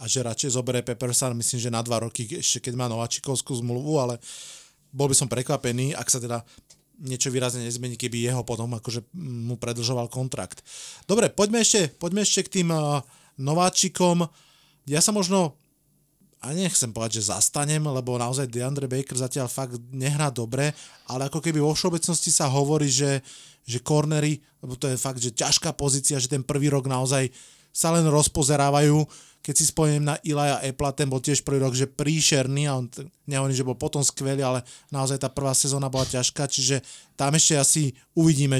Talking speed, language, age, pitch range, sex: 175 wpm, Slovak, 30-49, 130-155 Hz, male